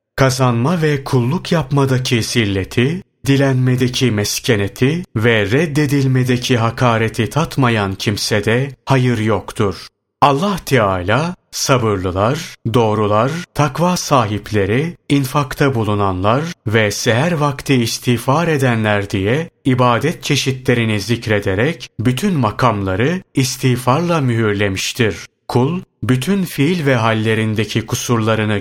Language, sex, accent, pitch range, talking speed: Turkish, male, native, 110-140 Hz, 90 wpm